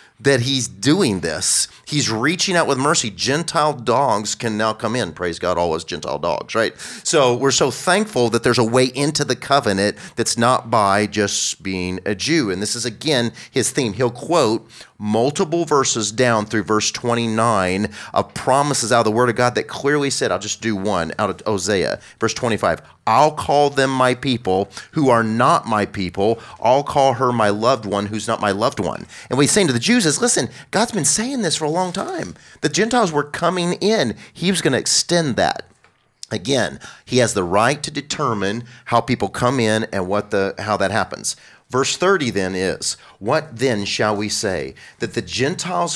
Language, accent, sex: English, American, male